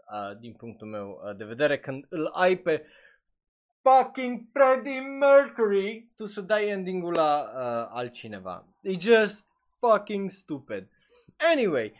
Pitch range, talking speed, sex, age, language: 140-215 Hz, 120 wpm, male, 20-39, Romanian